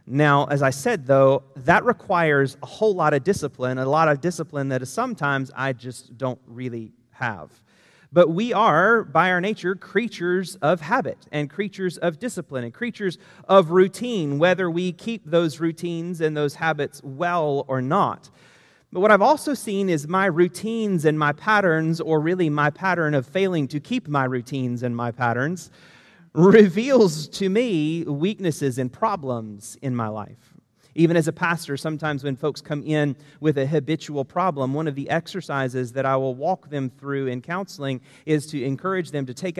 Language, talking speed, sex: English, 175 wpm, male